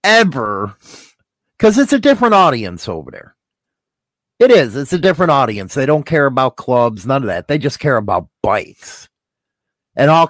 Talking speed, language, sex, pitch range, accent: 170 wpm, English, male, 135-190 Hz, American